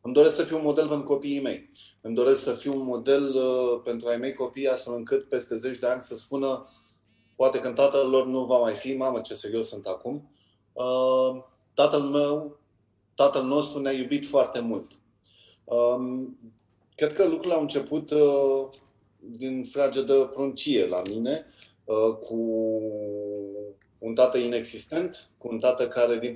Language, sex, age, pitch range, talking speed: Romanian, male, 30-49, 110-135 Hz, 165 wpm